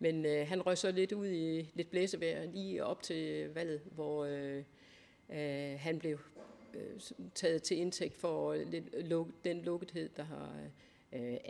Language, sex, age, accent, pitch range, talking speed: Danish, female, 60-79, native, 140-170 Hz, 160 wpm